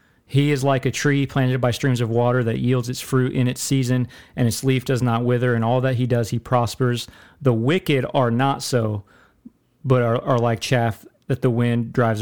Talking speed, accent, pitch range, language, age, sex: 215 wpm, American, 125-150 Hz, English, 40-59, male